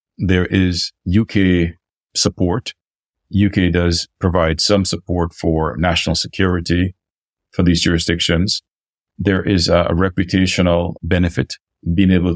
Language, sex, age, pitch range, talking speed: English, male, 40-59, 85-95 Hz, 110 wpm